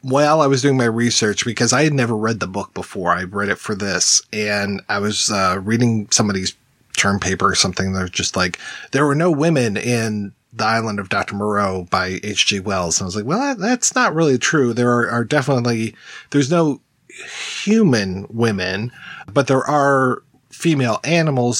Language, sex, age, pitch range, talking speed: English, male, 30-49, 110-150 Hz, 190 wpm